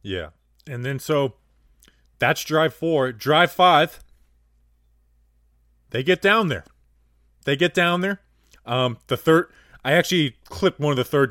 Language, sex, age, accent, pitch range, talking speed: English, male, 20-39, American, 100-150 Hz, 145 wpm